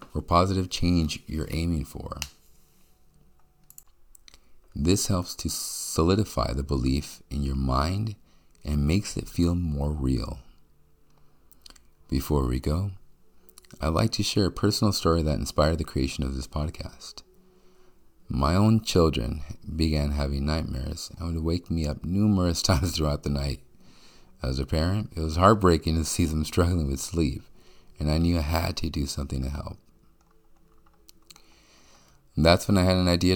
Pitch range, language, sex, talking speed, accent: 75-90 Hz, English, male, 150 wpm, American